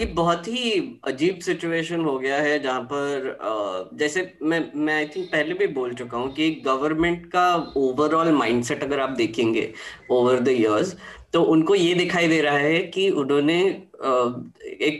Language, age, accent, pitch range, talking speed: Hindi, 10-29, native, 130-170 Hz, 160 wpm